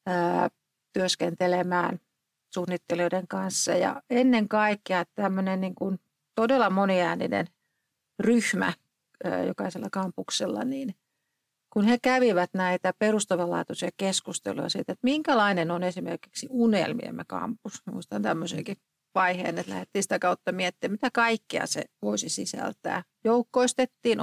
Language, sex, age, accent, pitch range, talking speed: Finnish, female, 40-59, native, 180-230 Hz, 105 wpm